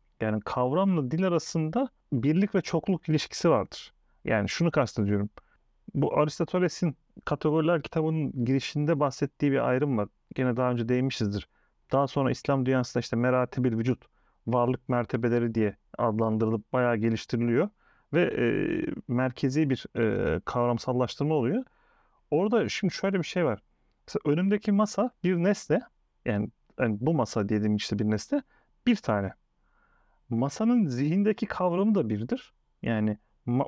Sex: male